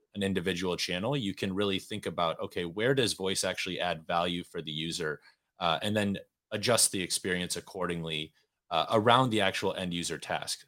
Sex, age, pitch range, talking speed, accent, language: male, 20-39, 85-105 Hz, 180 wpm, American, English